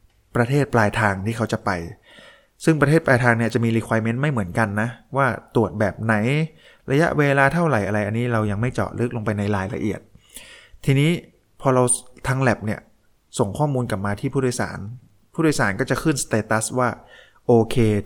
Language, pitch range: Thai, 105-125 Hz